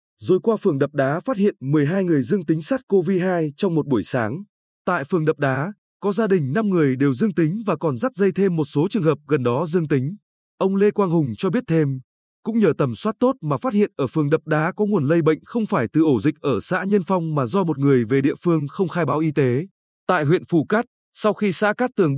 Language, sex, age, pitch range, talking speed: Vietnamese, male, 20-39, 150-195 Hz, 260 wpm